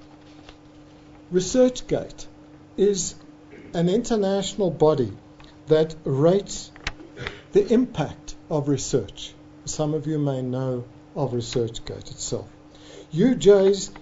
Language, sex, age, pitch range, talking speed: English, male, 60-79, 140-180 Hz, 85 wpm